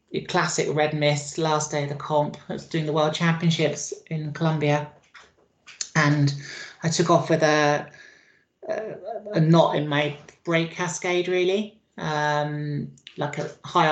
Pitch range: 150-170 Hz